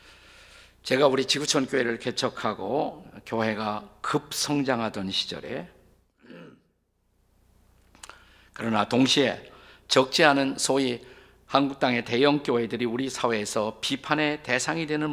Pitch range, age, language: 100-140 Hz, 50-69, Korean